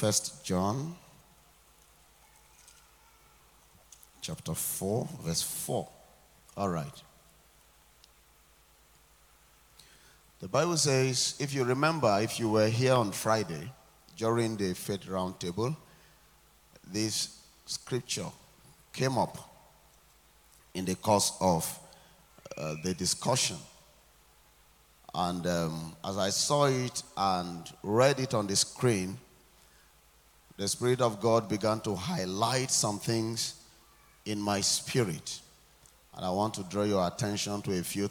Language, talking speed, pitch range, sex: English, 110 wpm, 100-130 Hz, male